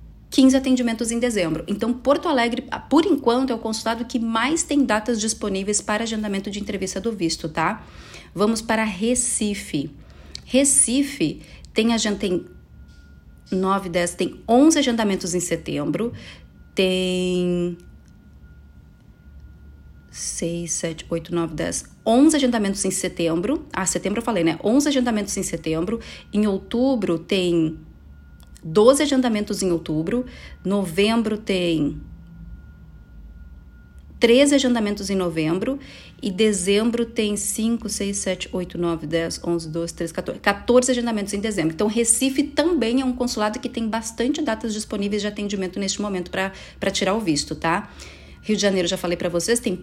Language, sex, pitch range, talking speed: Portuguese, female, 165-230 Hz, 135 wpm